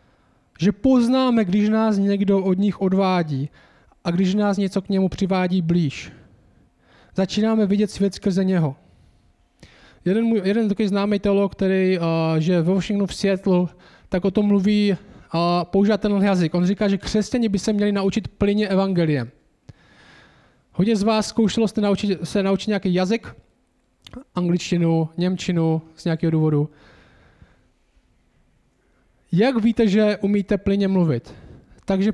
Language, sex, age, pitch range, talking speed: Czech, male, 20-39, 175-210 Hz, 135 wpm